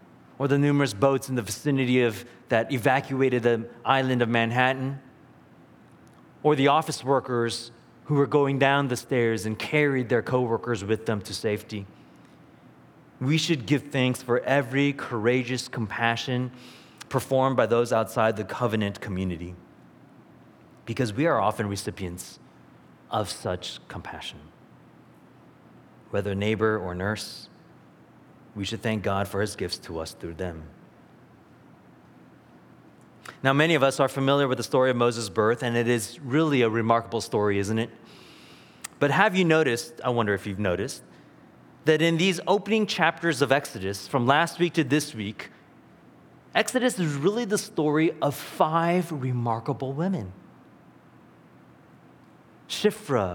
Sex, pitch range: male, 110-145 Hz